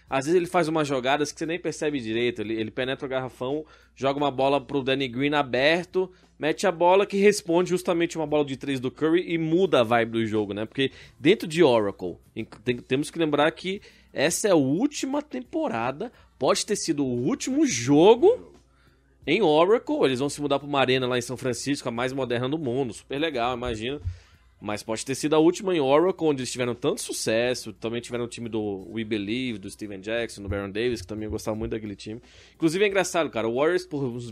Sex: male